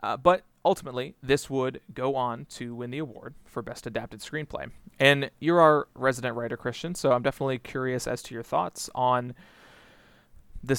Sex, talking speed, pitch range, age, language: male, 170 wpm, 120-155 Hz, 30-49, English